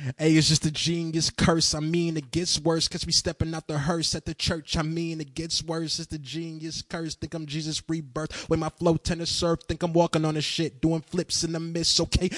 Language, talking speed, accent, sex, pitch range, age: English, 245 wpm, American, male, 160-185 Hz, 20-39